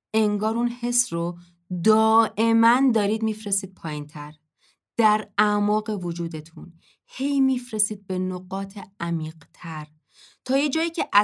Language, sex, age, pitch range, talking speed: Persian, female, 20-39, 185-260 Hz, 115 wpm